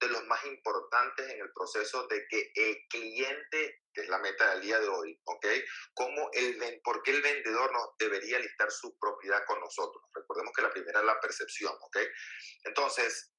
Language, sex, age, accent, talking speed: Spanish, male, 30-49, Venezuelan, 185 wpm